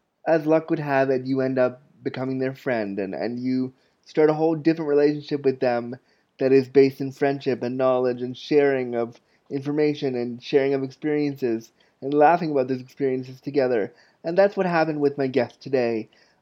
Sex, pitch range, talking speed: male, 125-155 Hz, 185 wpm